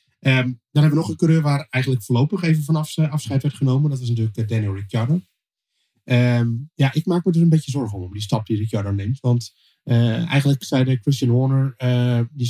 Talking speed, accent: 205 wpm, Dutch